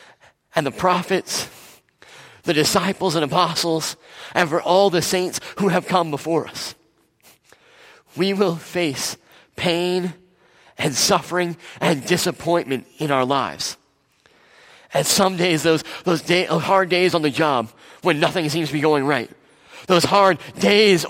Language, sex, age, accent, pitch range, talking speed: English, male, 30-49, American, 150-185 Hz, 140 wpm